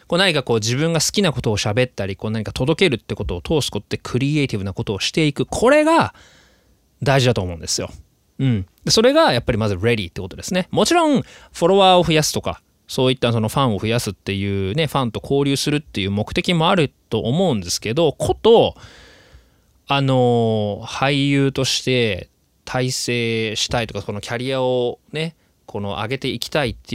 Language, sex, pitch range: Japanese, male, 105-145 Hz